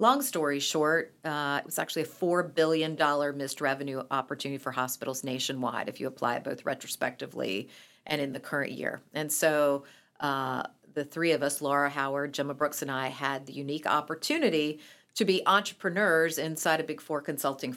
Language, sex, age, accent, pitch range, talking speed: English, female, 40-59, American, 145-170 Hz, 180 wpm